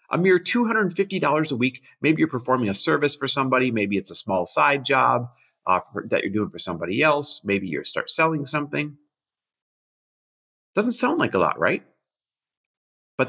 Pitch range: 125-180 Hz